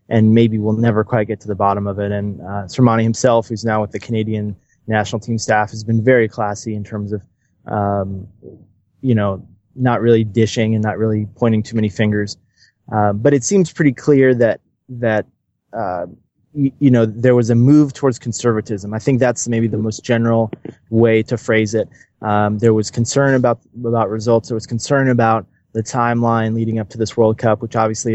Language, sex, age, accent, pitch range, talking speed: English, male, 20-39, American, 105-120 Hz, 200 wpm